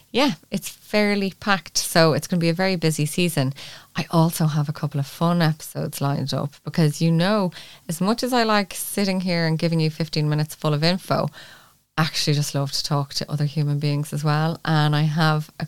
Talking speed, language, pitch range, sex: 220 wpm, English, 145-170 Hz, female